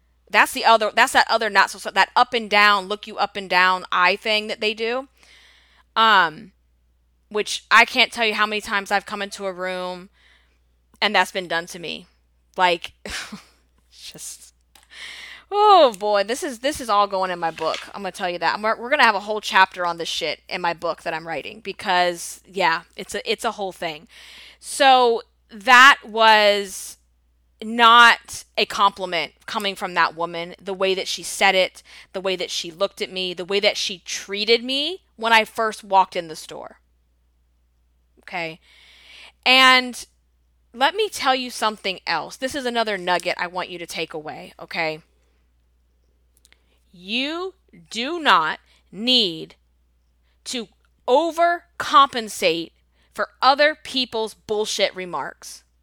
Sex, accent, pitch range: female, American, 160-220 Hz